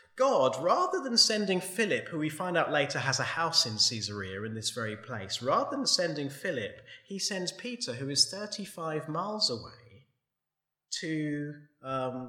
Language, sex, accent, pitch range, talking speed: English, male, British, 130-200 Hz, 160 wpm